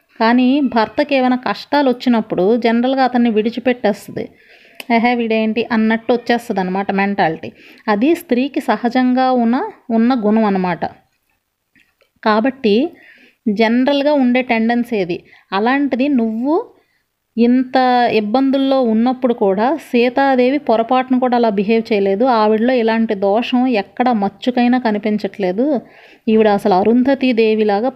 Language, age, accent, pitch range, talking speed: Telugu, 30-49, native, 210-255 Hz, 100 wpm